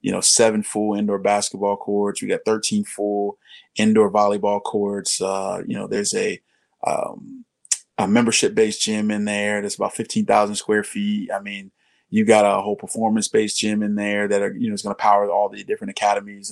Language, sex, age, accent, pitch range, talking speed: English, male, 20-39, American, 100-110 Hz, 195 wpm